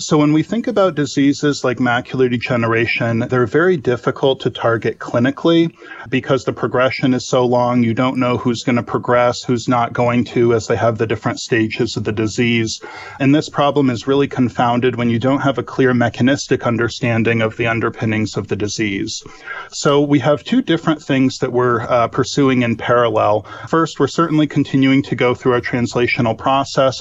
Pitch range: 120-135 Hz